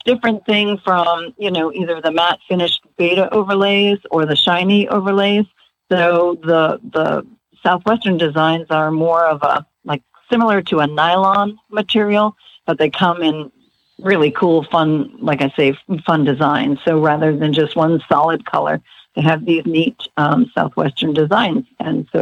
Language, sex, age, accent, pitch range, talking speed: English, female, 50-69, American, 155-200 Hz, 155 wpm